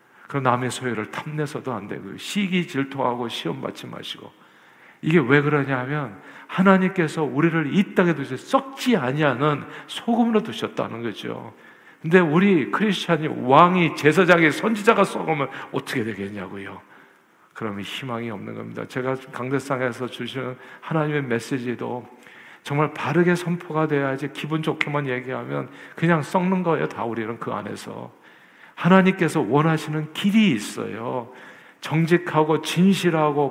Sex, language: male, Korean